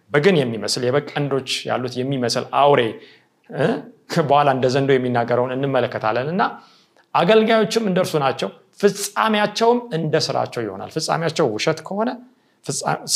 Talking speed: 95 wpm